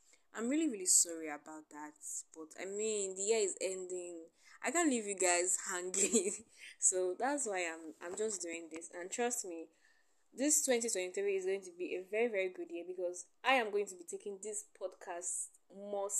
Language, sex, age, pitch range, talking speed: English, female, 10-29, 180-255 Hz, 190 wpm